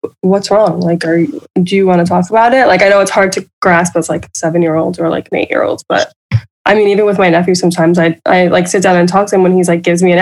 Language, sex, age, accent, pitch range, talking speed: English, female, 20-39, American, 170-205 Hz, 310 wpm